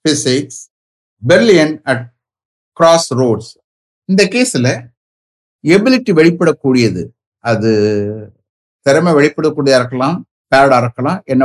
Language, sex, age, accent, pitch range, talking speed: English, male, 60-79, Indian, 115-165 Hz, 130 wpm